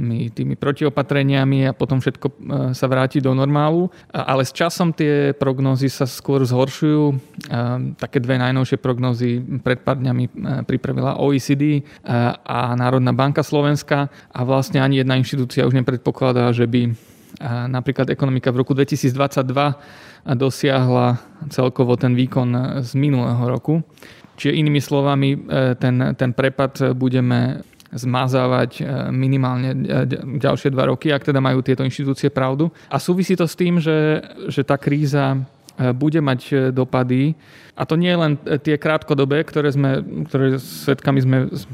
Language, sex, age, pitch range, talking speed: Slovak, male, 30-49, 130-145 Hz, 130 wpm